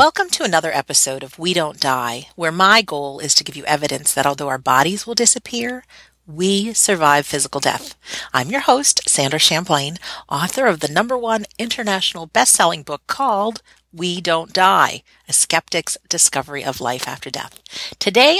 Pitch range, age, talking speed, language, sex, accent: 140-215 Hz, 50-69, 165 wpm, English, female, American